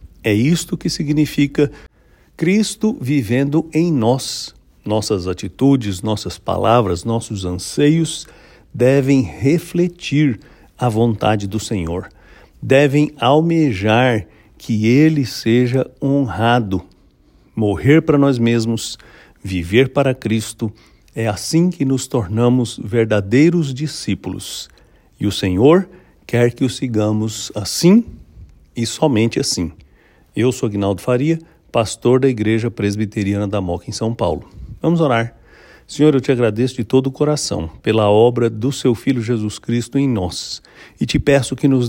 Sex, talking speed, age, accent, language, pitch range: male, 125 wpm, 60-79, Brazilian, English, 110-145 Hz